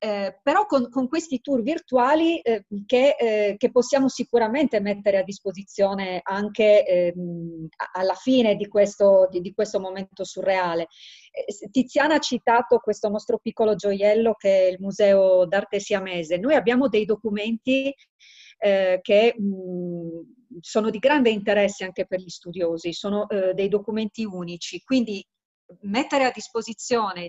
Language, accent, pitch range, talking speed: Italian, native, 190-240 Hz, 140 wpm